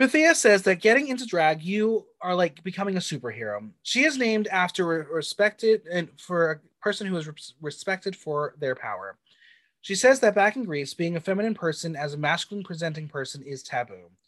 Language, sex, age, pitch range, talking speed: English, male, 30-49, 145-205 Hz, 170 wpm